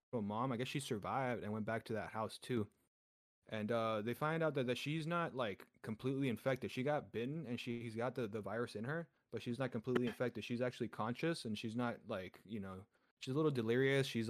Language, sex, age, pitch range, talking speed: English, male, 20-39, 110-130 Hz, 235 wpm